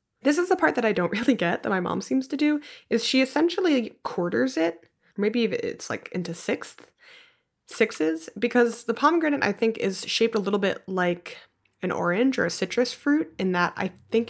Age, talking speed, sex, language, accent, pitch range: 20-39, 195 wpm, female, English, American, 185-255 Hz